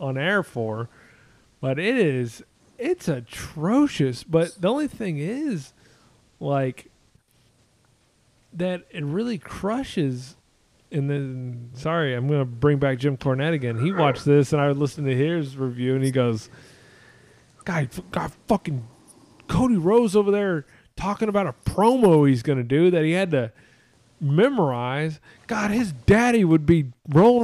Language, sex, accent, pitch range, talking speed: English, male, American, 130-200 Hz, 150 wpm